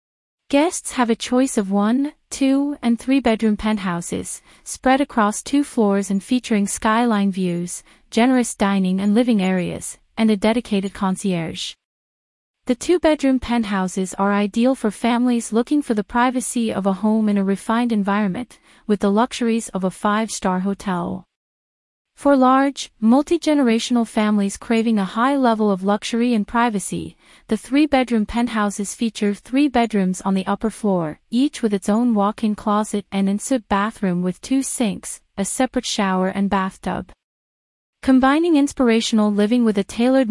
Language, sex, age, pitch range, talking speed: English, female, 30-49, 200-245 Hz, 145 wpm